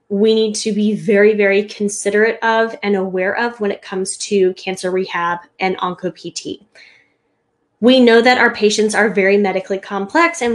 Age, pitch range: 10-29, 200-240 Hz